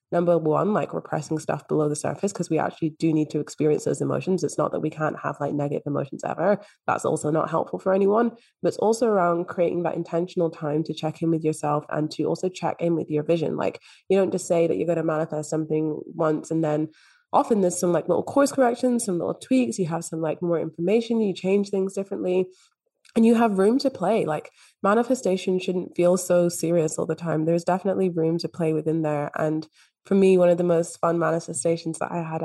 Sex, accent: female, British